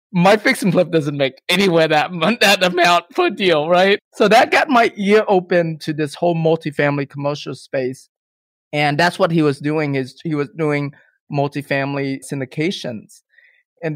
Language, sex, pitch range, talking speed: English, male, 140-175 Hz, 165 wpm